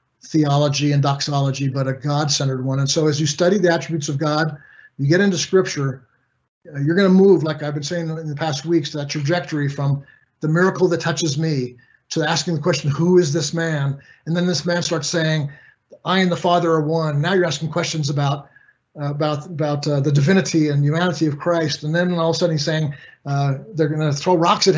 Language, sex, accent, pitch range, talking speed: English, male, American, 145-175 Hz, 215 wpm